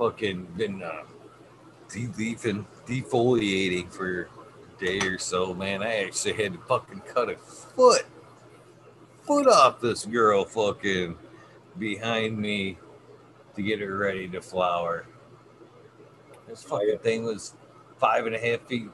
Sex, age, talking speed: male, 50-69, 135 wpm